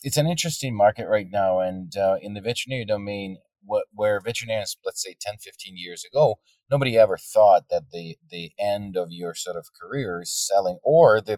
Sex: male